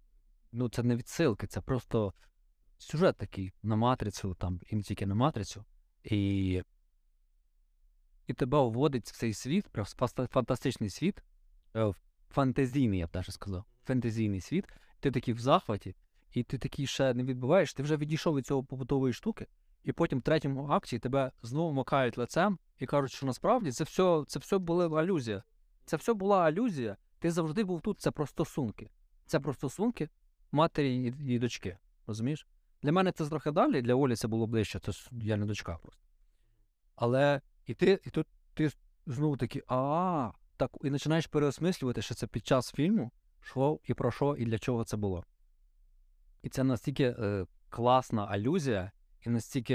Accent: native